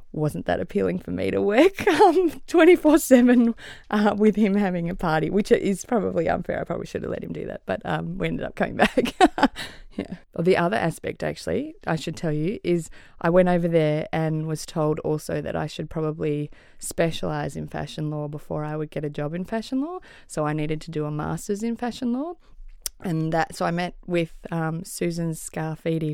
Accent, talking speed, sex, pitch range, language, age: Australian, 205 wpm, female, 150-180 Hz, English, 20-39